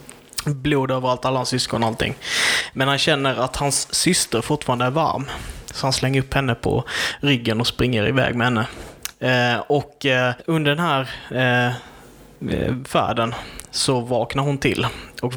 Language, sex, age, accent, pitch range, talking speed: Swedish, male, 20-39, native, 115-135 Hz, 160 wpm